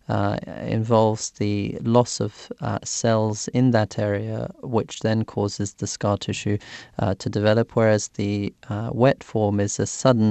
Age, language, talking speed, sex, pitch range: 30-49, English, 155 wpm, male, 100-115 Hz